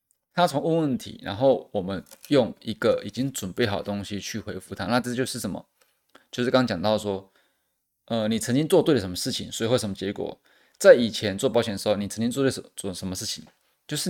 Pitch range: 105-120 Hz